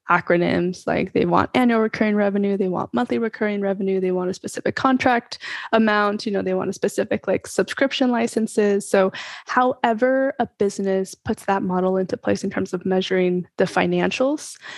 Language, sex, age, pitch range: English, female, 10-29, 185-220 Hz